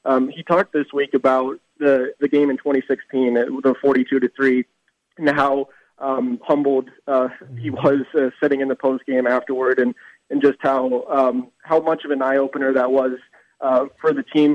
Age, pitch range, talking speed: 20-39, 130-145 Hz, 190 wpm